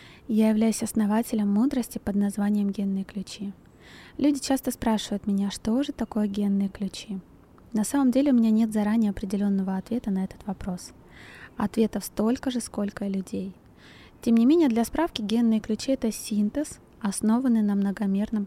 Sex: female